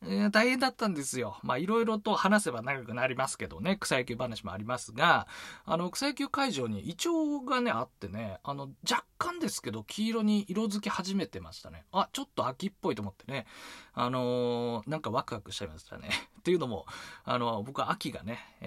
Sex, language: male, Japanese